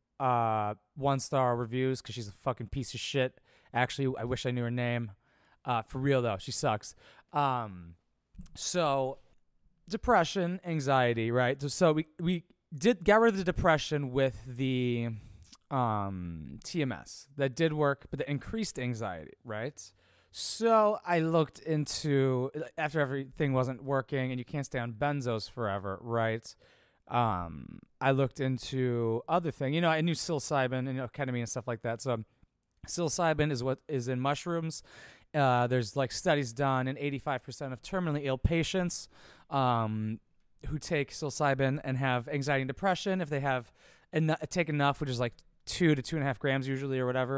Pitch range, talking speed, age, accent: 120-150 Hz, 165 wpm, 20-39, American